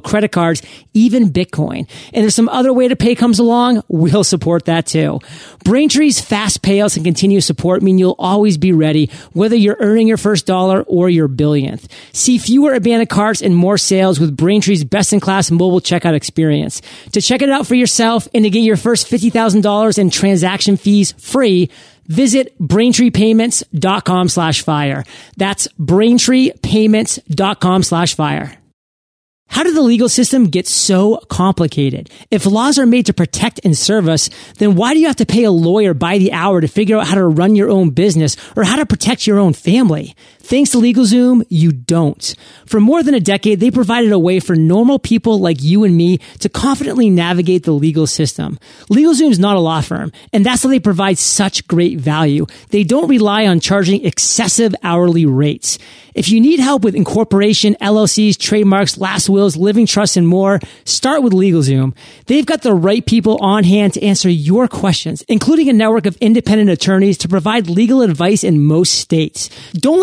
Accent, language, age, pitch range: American, English, 30-49, 175-230 Hz